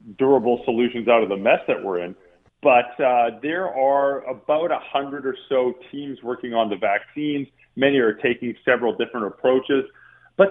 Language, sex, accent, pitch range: English, male, American, 120-170 Hz